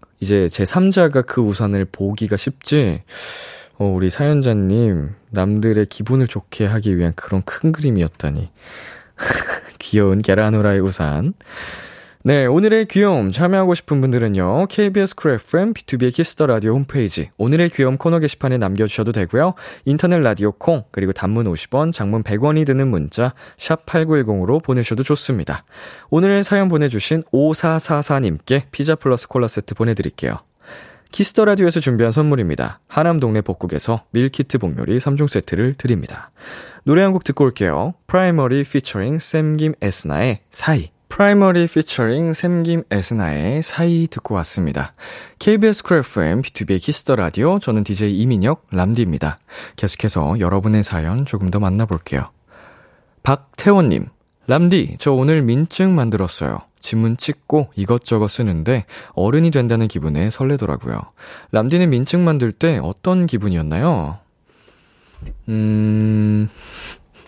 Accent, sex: native, male